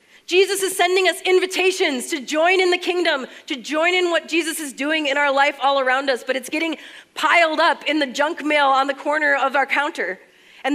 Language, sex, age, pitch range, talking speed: English, female, 30-49, 240-320 Hz, 220 wpm